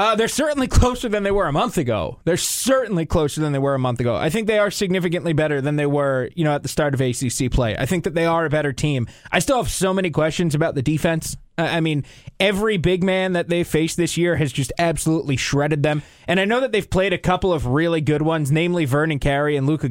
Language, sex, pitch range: English, male, 145-180 Hz